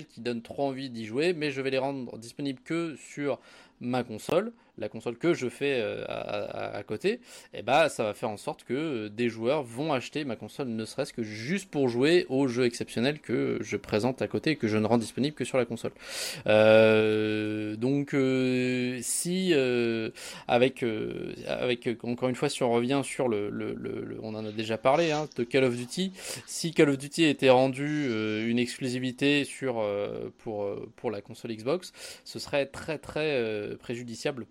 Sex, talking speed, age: male, 200 wpm, 20-39